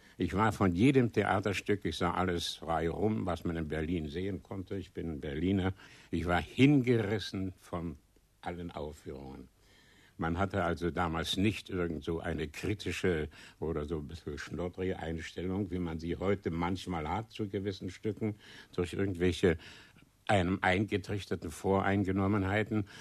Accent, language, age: German, German, 60-79